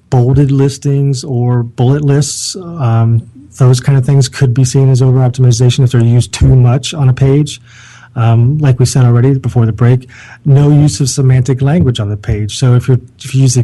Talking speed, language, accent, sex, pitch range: 200 wpm, English, American, male, 115-135 Hz